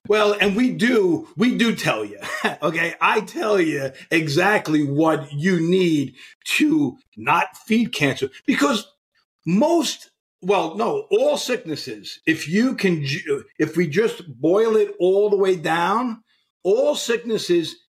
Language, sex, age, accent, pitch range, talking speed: English, male, 50-69, American, 170-270 Hz, 135 wpm